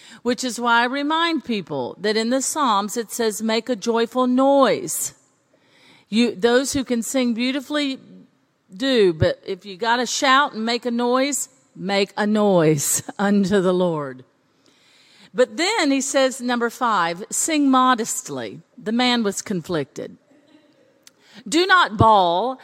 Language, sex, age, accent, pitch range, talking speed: English, female, 50-69, American, 200-275 Hz, 140 wpm